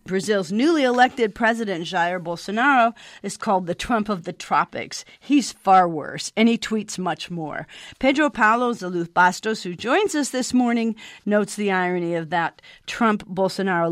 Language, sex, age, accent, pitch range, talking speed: English, female, 50-69, American, 185-230 Hz, 155 wpm